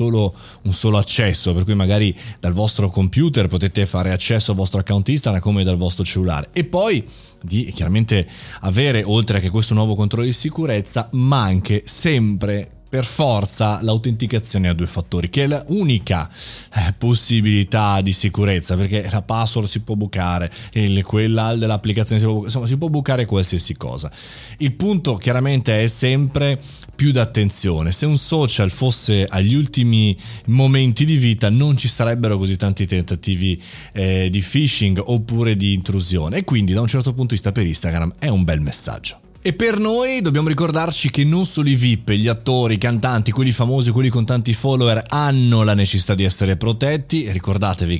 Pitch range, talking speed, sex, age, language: 95-125 Hz, 170 wpm, male, 30-49, Italian